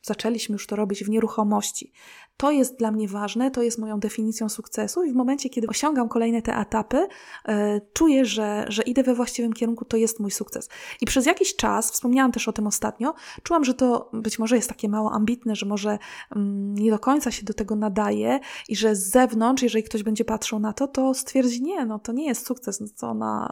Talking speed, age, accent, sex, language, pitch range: 215 wpm, 20-39, native, female, Polish, 220-260 Hz